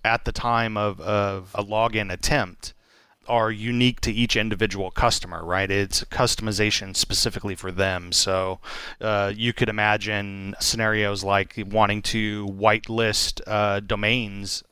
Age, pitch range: 30-49, 100-115 Hz